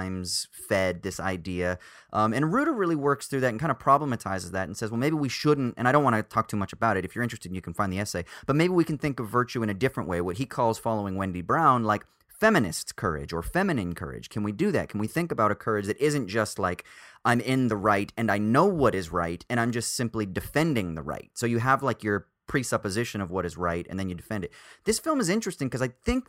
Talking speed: 260 wpm